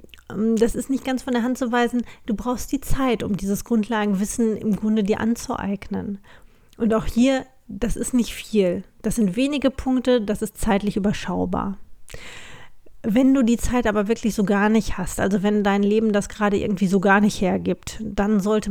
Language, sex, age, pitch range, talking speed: German, female, 40-59, 195-225 Hz, 185 wpm